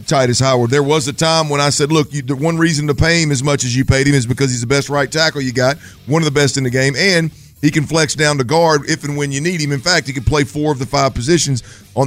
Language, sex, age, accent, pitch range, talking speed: English, male, 50-69, American, 125-145 Hz, 315 wpm